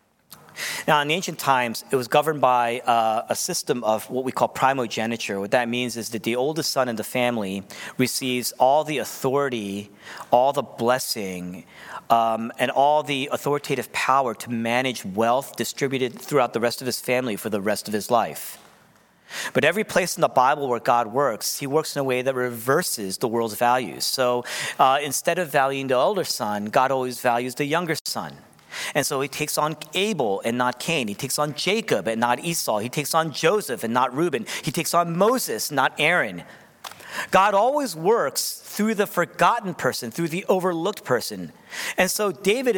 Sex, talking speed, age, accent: male, 185 wpm, 40-59, American